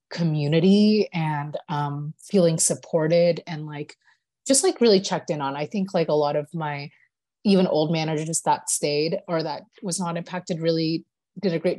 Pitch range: 160-195 Hz